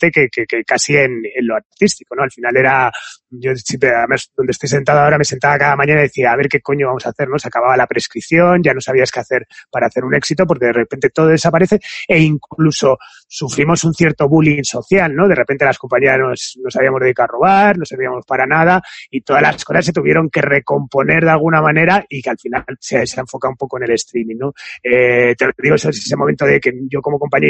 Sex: male